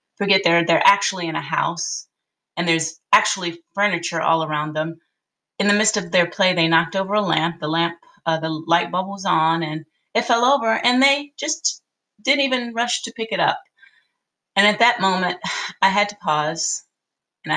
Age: 30-49